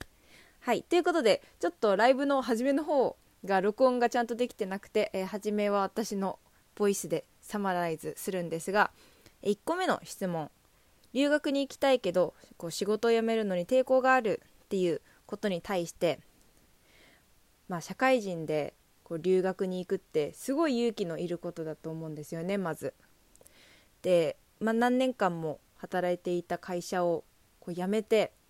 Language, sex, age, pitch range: Japanese, female, 20-39, 175-235 Hz